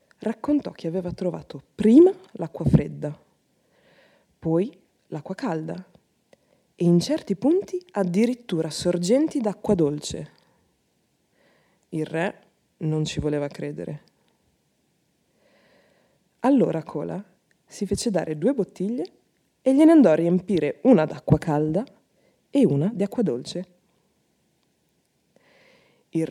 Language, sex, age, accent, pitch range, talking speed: Italian, female, 20-39, native, 170-240 Hz, 105 wpm